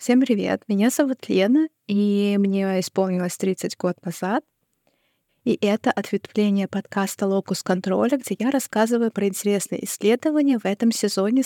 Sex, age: female, 20-39